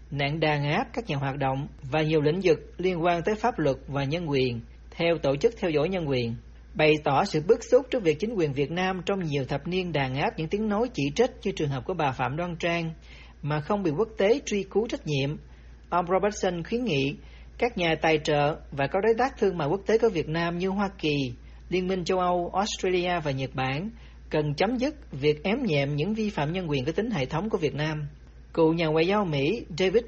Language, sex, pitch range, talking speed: Vietnamese, male, 145-200 Hz, 235 wpm